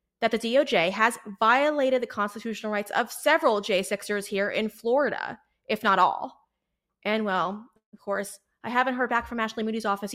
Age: 20-39